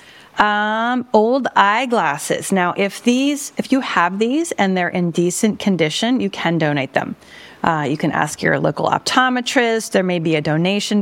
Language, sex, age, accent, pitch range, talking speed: English, female, 30-49, American, 175-240 Hz, 170 wpm